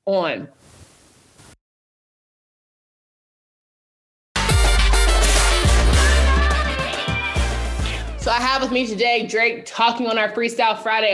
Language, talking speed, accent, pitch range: English, 70 wpm, American, 170-225 Hz